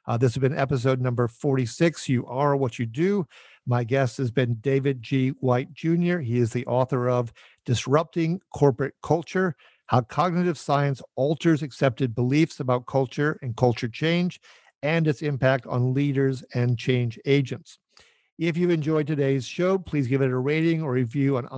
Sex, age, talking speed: male, 50-69, 165 wpm